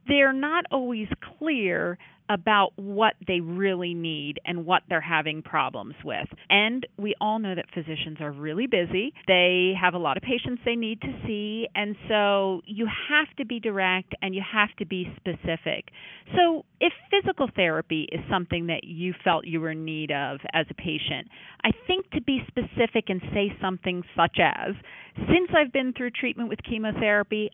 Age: 40-59